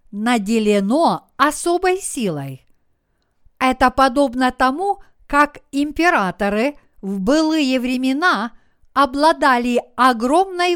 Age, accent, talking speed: 50-69, native, 75 wpm